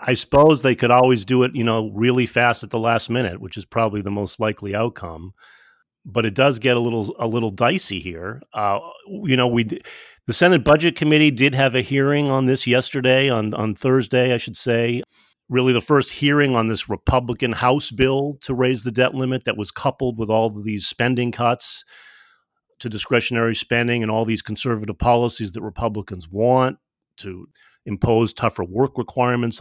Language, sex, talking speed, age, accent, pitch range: English, male, 185 wpm, 40-59, American, 110-130 Hz